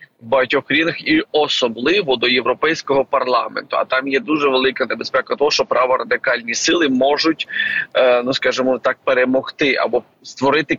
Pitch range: 130-180 Hz